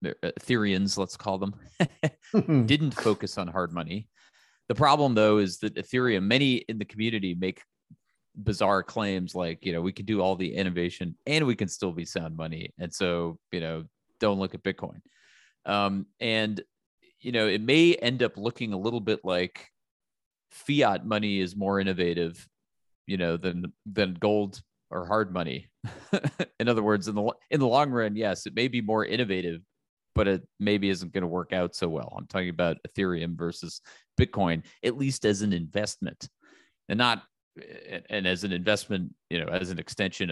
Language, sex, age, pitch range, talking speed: English, male, 30-49, 90-120 Hz, 175 wpm